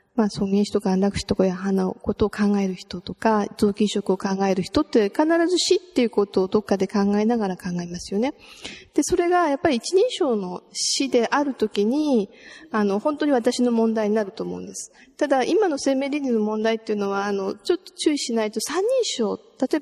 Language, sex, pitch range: Japanese, female, 200-280 Hz